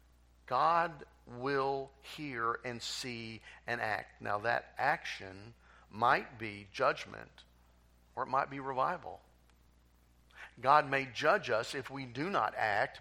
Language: English